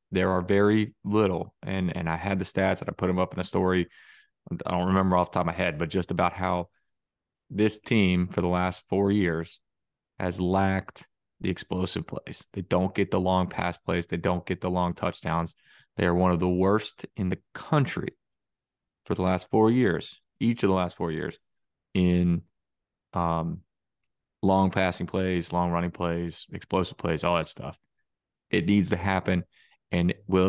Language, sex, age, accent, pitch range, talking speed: English, male, 30-49, American, 90-100 Hz, 185 wpm